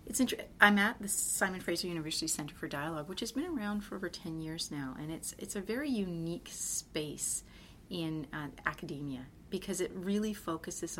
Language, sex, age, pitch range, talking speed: English, female, 30-49, 155-180 Hz, 185 wpm